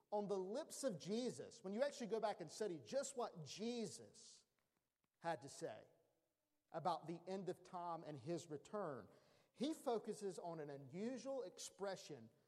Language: English